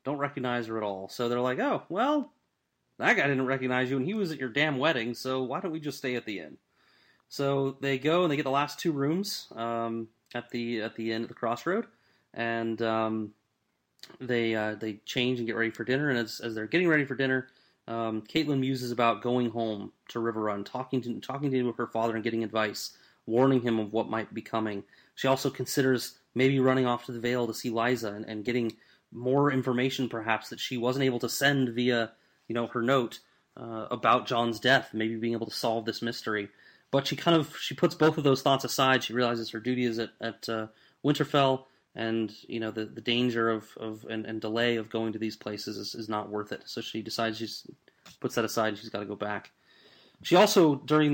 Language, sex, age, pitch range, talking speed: English, male, 30-49, 115-130 Hz, 225 wpm